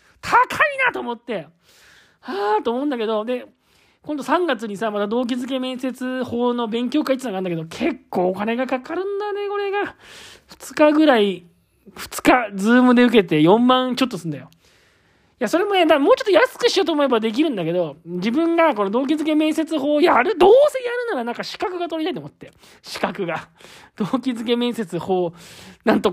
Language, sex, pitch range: Japanese, male, 185-295 Hz